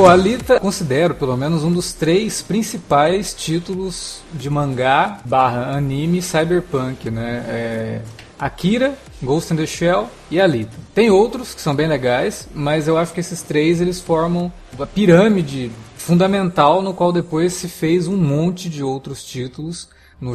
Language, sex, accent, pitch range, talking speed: Portuguese, male, Brazilian, 140-185 Hz, 150 wpm